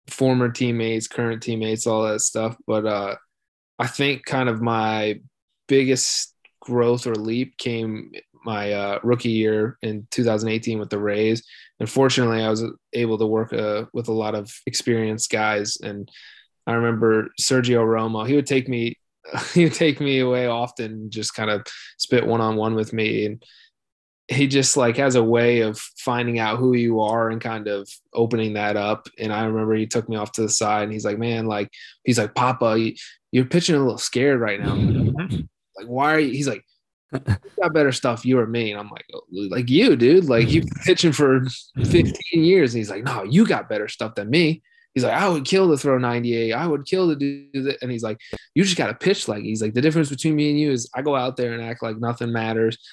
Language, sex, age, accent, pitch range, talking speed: English, male, 20-39, American, 110-130 Hz, 215 wpm